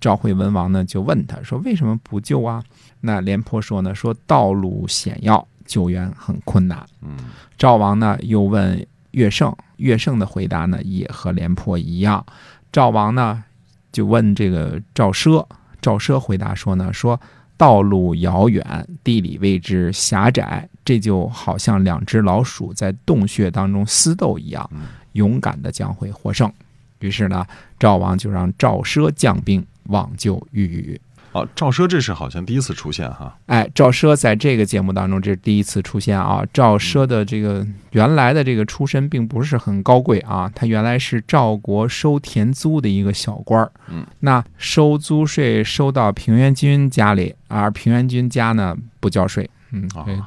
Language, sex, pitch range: Chinese, male, 100-125 Hz